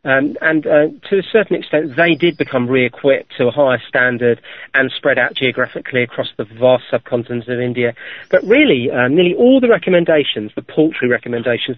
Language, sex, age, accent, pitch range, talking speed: English, male, 40-59, British, 125-175 Hz, 180 wpm